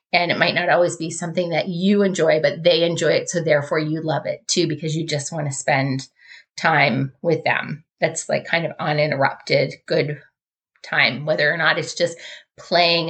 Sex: female